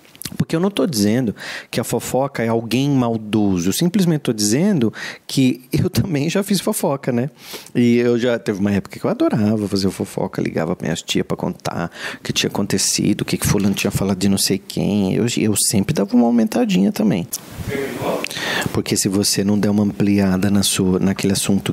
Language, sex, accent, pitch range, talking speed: Portuguese, male, Brazilian, 115-170 Hz, 195 wpm